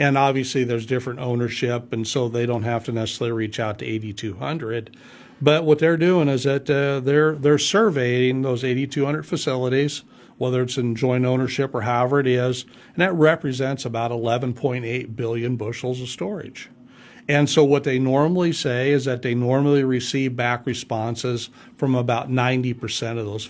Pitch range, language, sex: 120-140 Hz, English, male